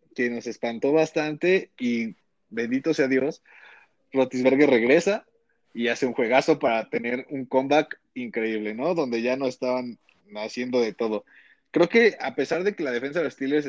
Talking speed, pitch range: 165 wpm, 120-150 Hz